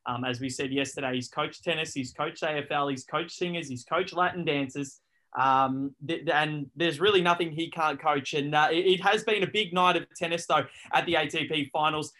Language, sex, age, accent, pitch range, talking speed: English, male, 20-39, Australian, 140-185 Hz, 210 wpm